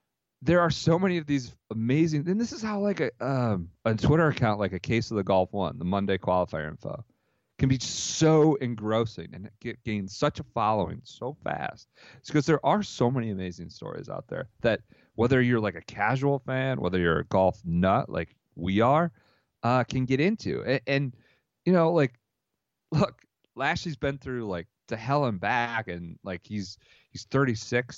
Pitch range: 100-150 Hz